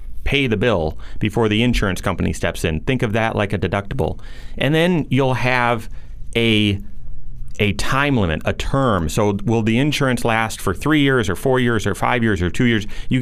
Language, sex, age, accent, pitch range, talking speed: English, male, 30-49, American, 100-130 Hz, 195 wpm